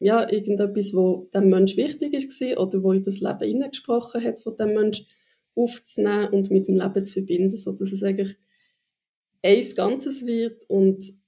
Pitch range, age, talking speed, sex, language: 195-225 Hz, 20-39, 170 wpm, female, German